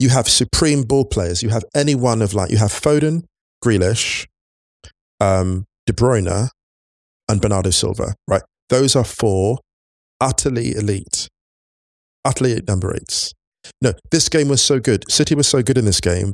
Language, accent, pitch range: English, British, 90-120 Hz